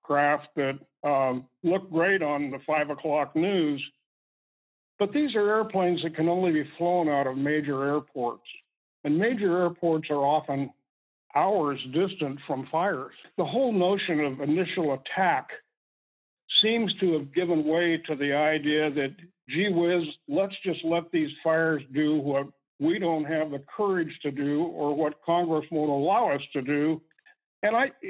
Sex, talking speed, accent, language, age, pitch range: male, 155 wpm, American, English, 60-79, 150-180 Hz